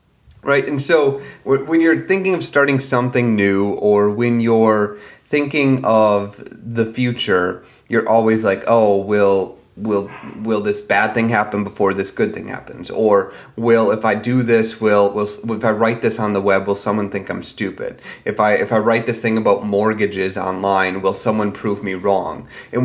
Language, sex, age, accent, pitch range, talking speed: English, male, 30-49, American, 100-125 Hz, 180 wpm